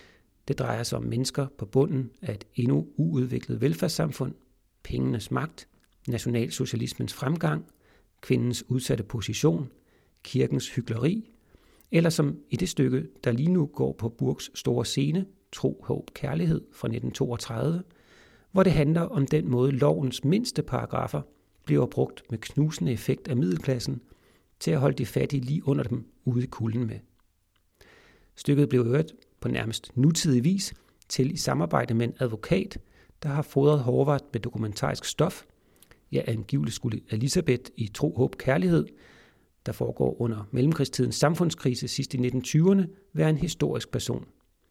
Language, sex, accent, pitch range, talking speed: Danish, male, native, 120-150 Hz, 140 wpm